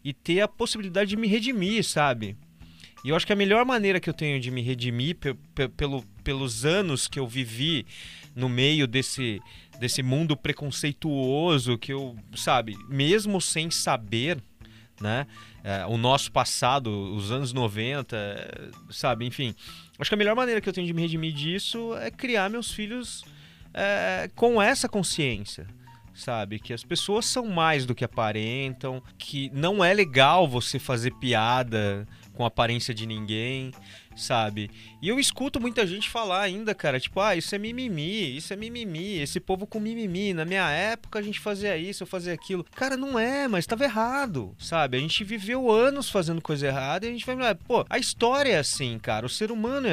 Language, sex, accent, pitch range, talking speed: Portuguese, male, Brazilian, 120-200 Hz, 175 wpm